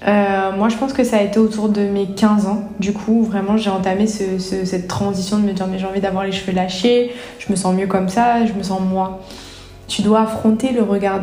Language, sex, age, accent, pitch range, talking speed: French, female, 20-39, French, 190-220 Hz, 250 wpm